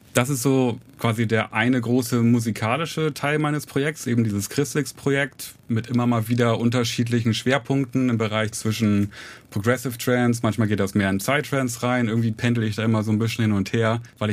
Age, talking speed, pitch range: 30-49, 180 wpm, 105-125 Hz